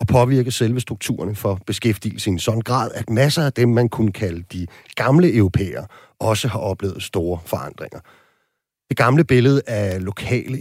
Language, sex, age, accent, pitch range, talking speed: Danish, male, 40-59, native, 100-125 Hz, 170 wpm